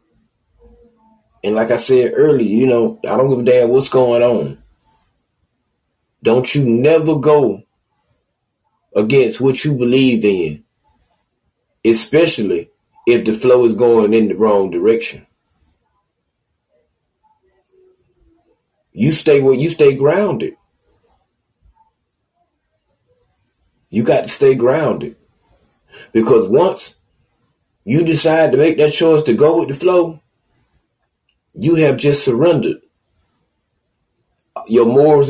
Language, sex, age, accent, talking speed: English, male, 30-49, American, 110 wpm